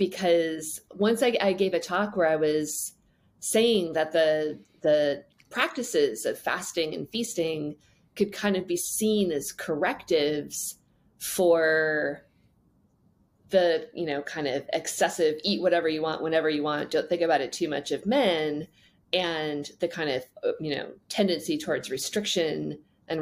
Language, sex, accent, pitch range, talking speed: English, female, American, 155-220 Hz, 140 wpm